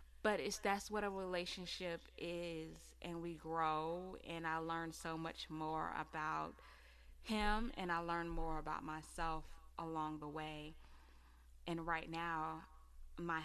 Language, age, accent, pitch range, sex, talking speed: English, 20-39, American, 145-170 Hz, female, 135 wpm